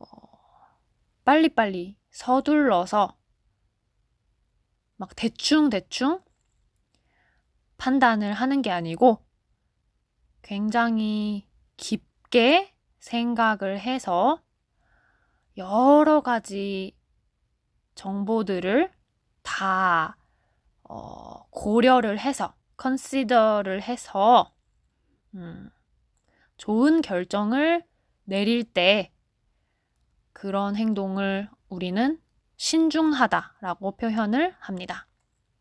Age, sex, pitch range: 20-39, female, 195-265 Hz